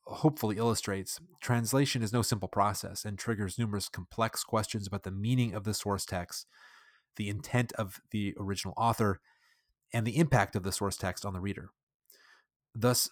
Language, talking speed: English, 165 wpm